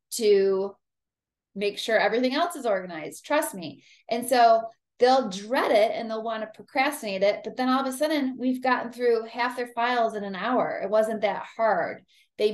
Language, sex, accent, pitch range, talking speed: English, female, American, 190-240 Hz, 185 wpm